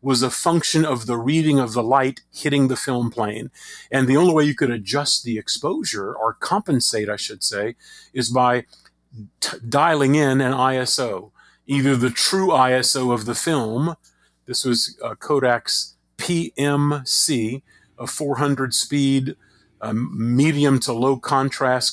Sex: male